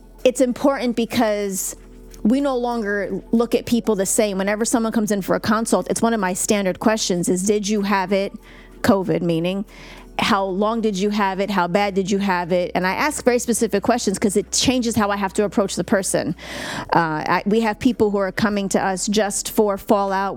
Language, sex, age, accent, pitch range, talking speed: English, female, 30-49, American, 190-230 Hz, 210 wpm